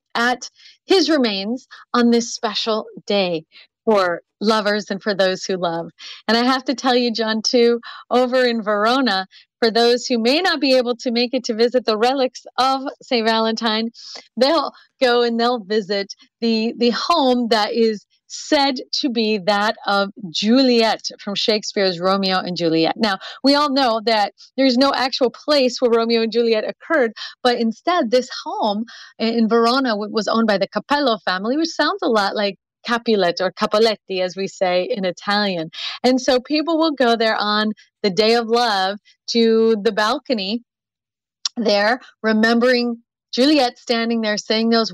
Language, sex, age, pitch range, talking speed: English, female, 30-49, 205-250 Hz, 165 wpm